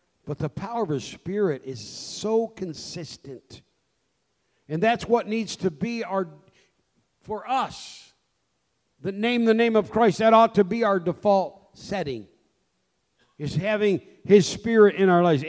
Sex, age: male, 50-69